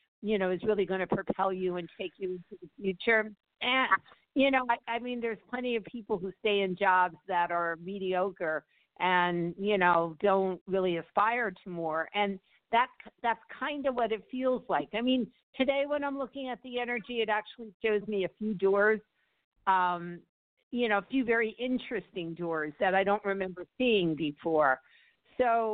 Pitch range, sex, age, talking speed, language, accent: 180-225 Hz, female, 50-69, 185 wpm, English, American